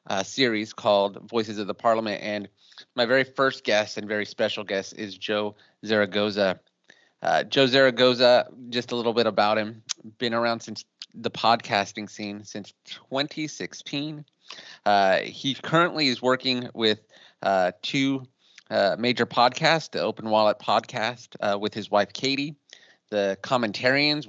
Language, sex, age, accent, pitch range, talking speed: English, male, 30-49, American, 105-135 Hz, 145 wpm